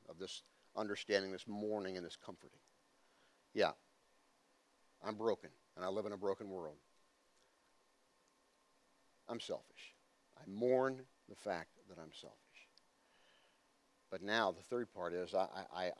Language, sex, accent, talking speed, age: English, male, American, 130 wpm, 50-69